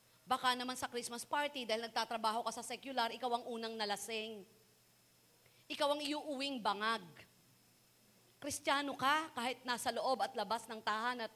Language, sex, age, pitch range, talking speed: Filipino, female, 40-59, 240-355 Hz, 150 wpm